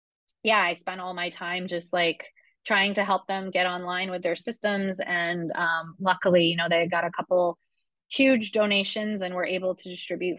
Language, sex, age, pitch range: English, female, 20-39, 175-215 Hz